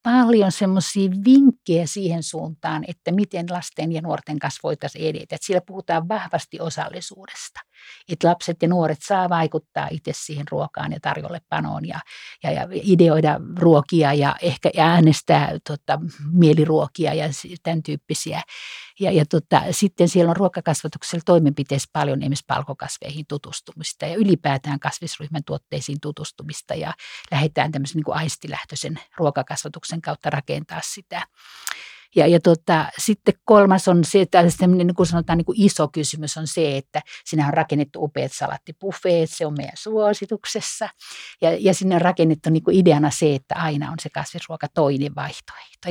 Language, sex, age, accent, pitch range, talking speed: Finnish, female, 50-69, native, 150-180 Hz, 145 wpm